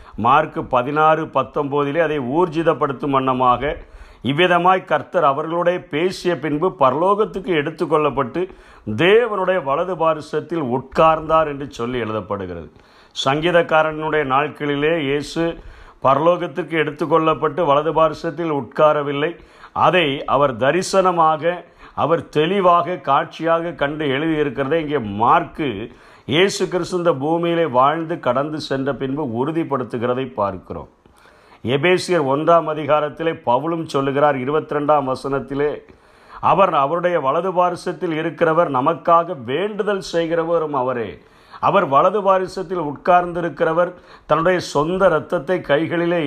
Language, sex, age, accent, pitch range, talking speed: Tamil, male, 50-69, native, 145-175 Hz, 90 wpm